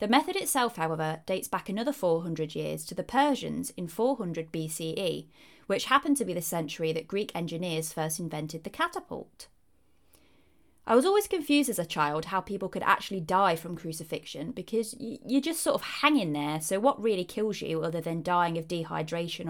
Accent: British